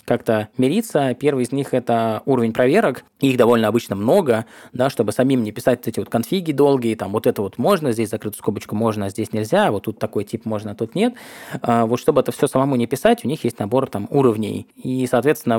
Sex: male